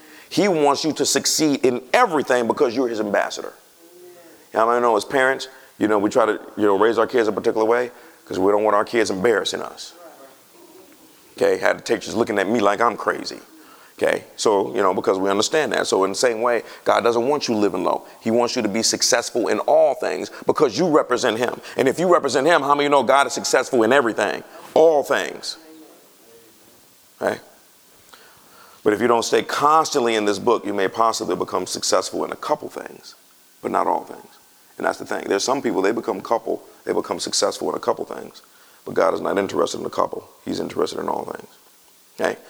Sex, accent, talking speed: male, American, 210 wpm